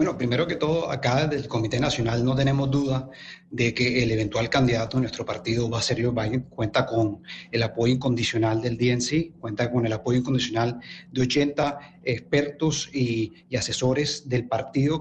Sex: male